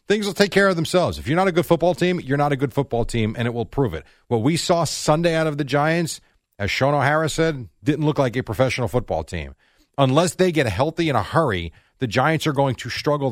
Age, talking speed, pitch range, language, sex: 30-49, 250 wpm, 110-155 Hz, English, male